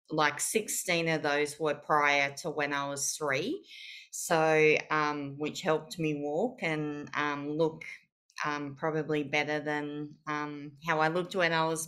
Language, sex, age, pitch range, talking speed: English, female, 30-49, 145-165 Hz, 155 wpm